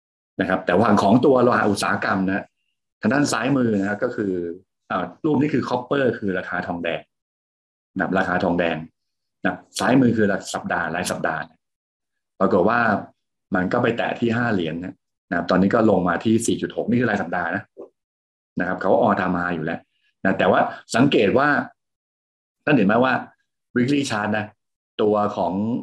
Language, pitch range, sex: Thai, 85-105 Hz, male